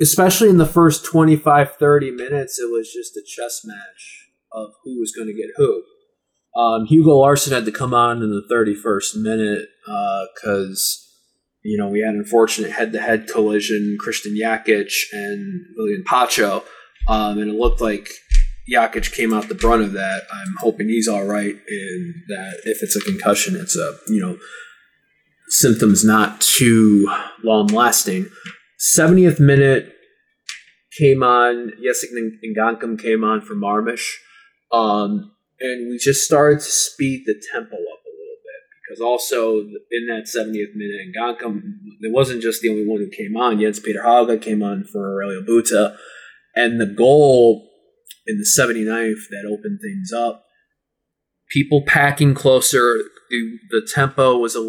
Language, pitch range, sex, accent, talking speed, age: English, 110-155 Hz, male, American, 155 wpm, 20-39